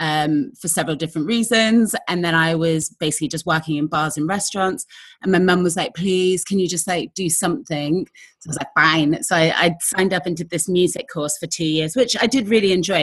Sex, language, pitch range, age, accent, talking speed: female, English, 155-195 Hz, 30-49, British, 235 wpm